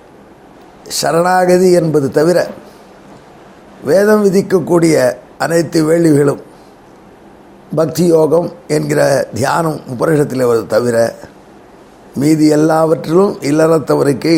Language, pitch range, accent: Tamil, 155-190 Hz, native